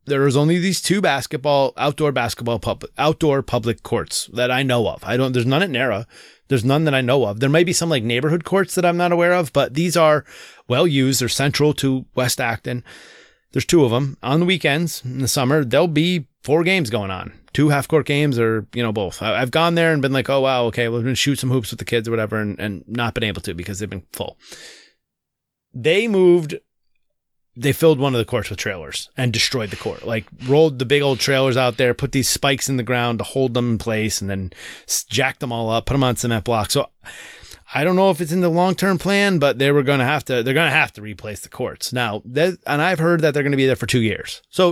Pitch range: 120-160 Hz